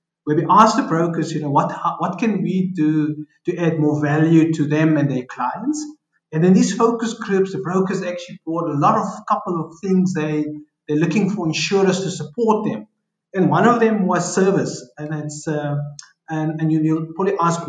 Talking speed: 205 wpm